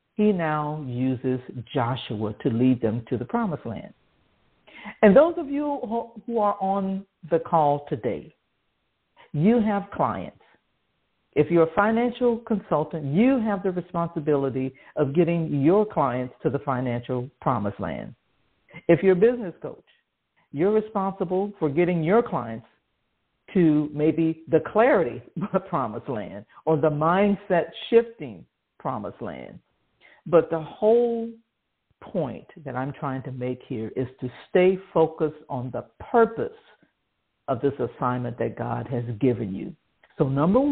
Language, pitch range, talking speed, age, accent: English, 135-200 Hz, 135 wpm, 50-69, American